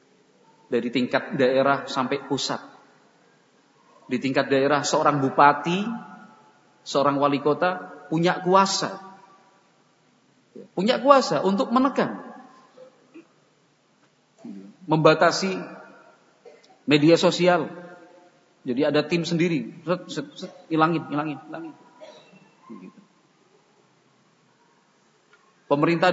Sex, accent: male, native